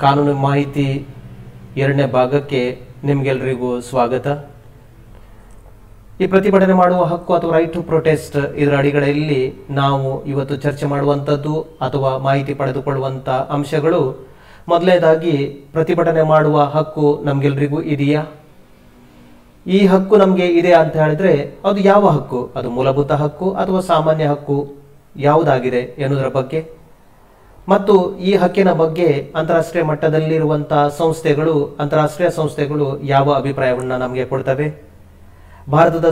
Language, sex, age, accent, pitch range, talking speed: Kannada, male, 40-59, native, 140-170 Hz, 105 wpm